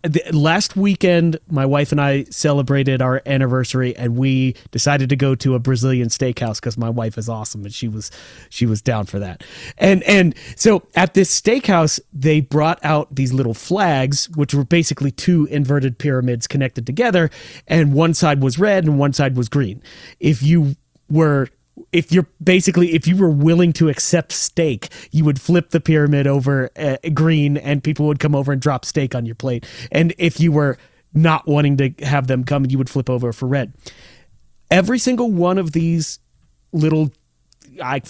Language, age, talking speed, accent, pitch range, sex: English, 30-49, 185 wpm, American, 130-165 Hz, male